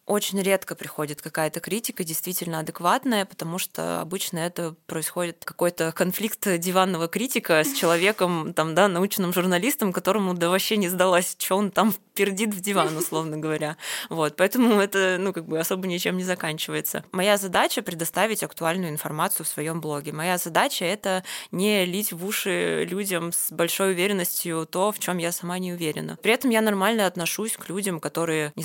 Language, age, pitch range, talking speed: Russian, 20-39, 160-200 Hz, 170 wpm